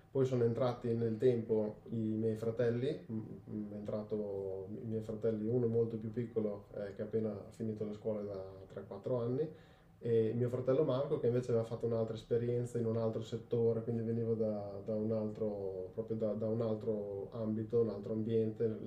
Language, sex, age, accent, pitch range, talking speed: Italian, male, 10-29, native, 110-125 Hz, 180 wpm